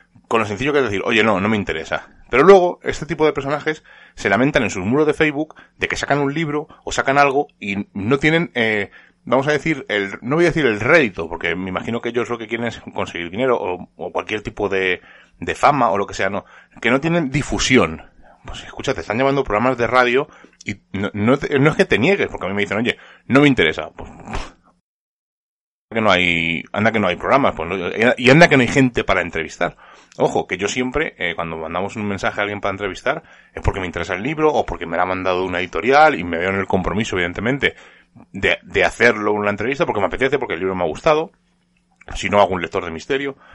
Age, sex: 30-49, male